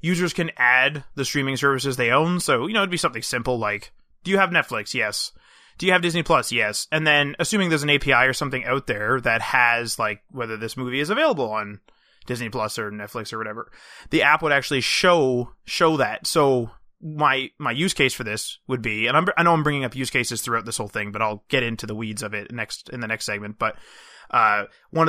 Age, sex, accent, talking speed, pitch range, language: 20-39, male, American, 230 wpm, 120-150 Hz, English